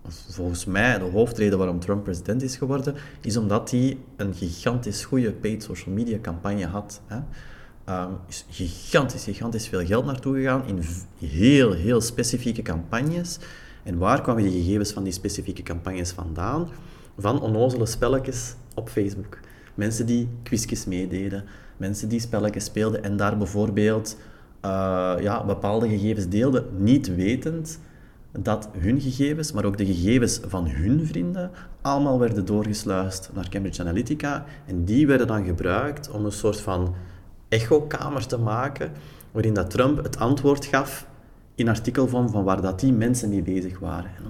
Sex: male